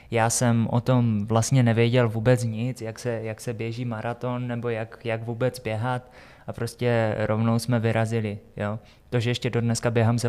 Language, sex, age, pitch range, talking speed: Czech, male, 20-39, 110-120 Hz, 185 wpm